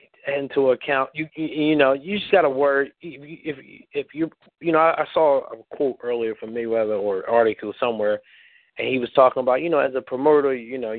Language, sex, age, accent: English, male, 30-49, American